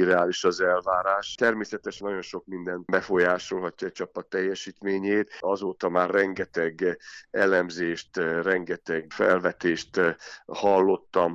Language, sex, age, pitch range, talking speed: Hungarian, male, 50-69, 85-100 Hz, 95 wpm